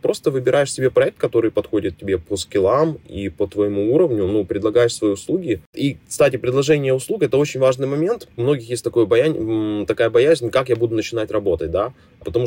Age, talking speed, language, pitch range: 20-39, 190 wpm, Ukrainian, 110-150 Hz